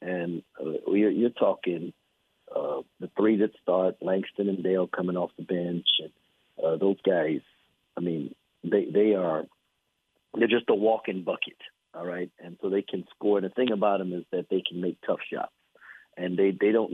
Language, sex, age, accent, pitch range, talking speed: English, male, 50-69, American, 90-105 Hz, 190 wpm